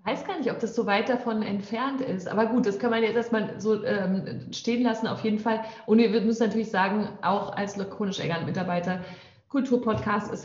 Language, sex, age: German, female, 30-49